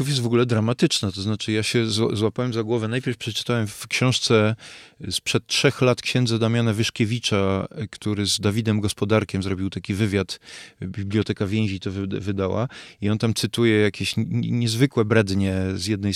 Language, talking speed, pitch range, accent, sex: Polish, 150 wpm, 105-125 Hz, native, male